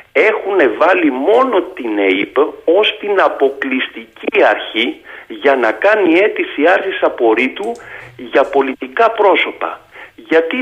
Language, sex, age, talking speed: Greek, male, 50-69, 105 wpm